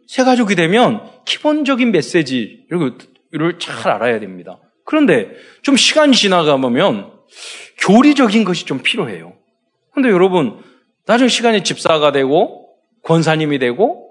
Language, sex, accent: Korean, male, native